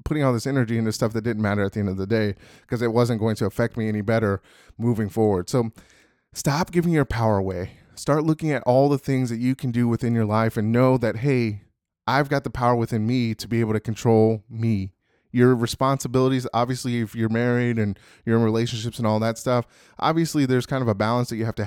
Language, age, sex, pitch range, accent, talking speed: English, 30-49, male, 110-125 Hz, American, 235 wpm